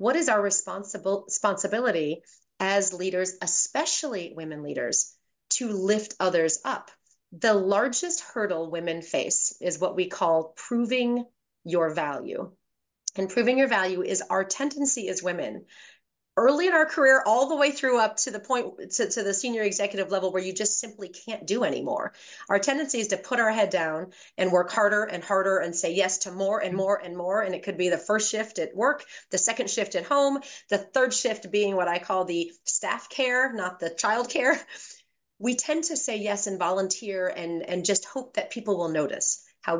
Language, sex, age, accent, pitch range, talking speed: English, female, 30-49, American, 180-230 Hz, 190 wpm